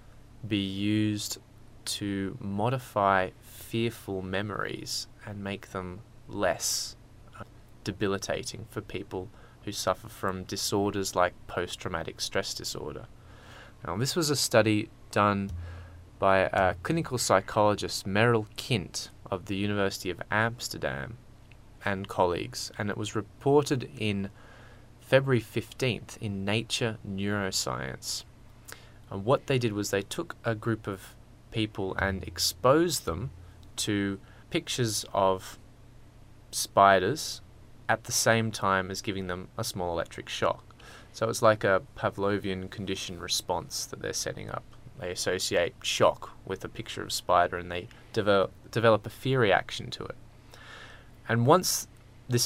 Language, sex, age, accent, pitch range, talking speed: English, male, 20-39, Australian, 100-115 Hz, 125 wpm